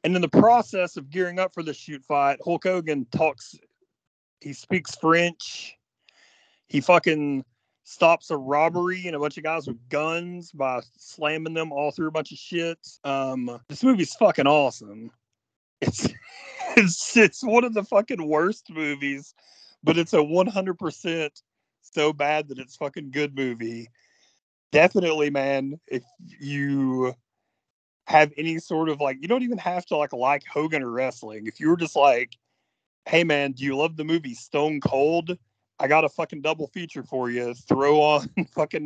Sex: male